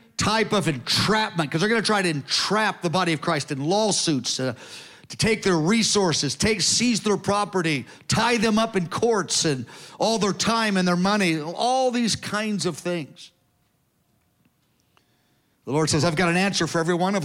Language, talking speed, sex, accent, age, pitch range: English, 180 wpm, male, American, 50-69, 160-210 Hz